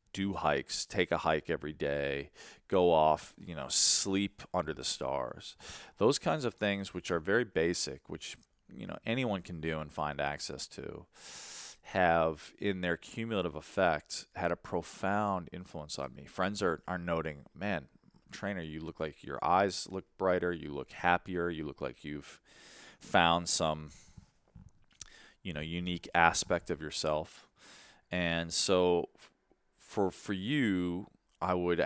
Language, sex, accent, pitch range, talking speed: English, male, American, 75-95 Hz, 150 wpm